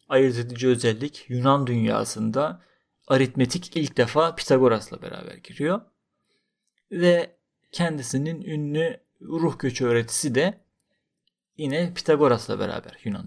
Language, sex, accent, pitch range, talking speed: Turkish, male, native, 130-185 Hz, 100 wpm